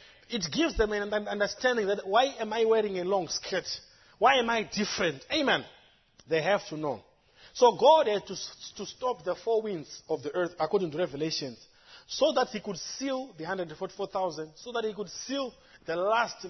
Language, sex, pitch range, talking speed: English, male, 160-215 Hz, 185 wpm